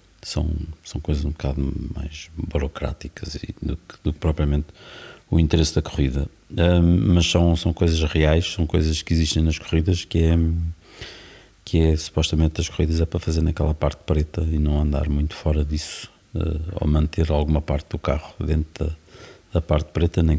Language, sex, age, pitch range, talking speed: Portuguese, male, 50-69, 75-90 Hz, 170 wpm